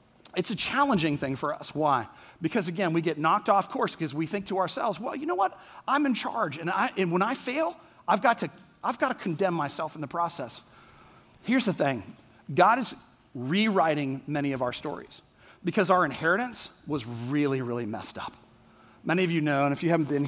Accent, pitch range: American, 140-215 Hz